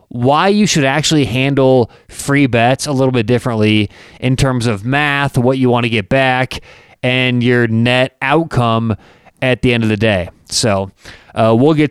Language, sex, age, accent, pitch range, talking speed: English, male, 30-49, American, 120-150 Hz, 175 wpm